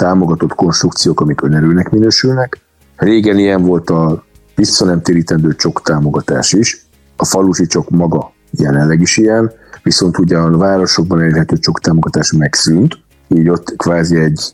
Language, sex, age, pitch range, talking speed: Hungarian, male, 50-69, 80-90 Hz, 130 wpm